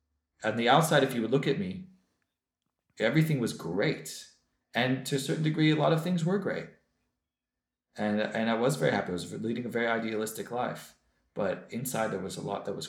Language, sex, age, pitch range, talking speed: English, male, 30-49, 95-140 Hz, 205 wpm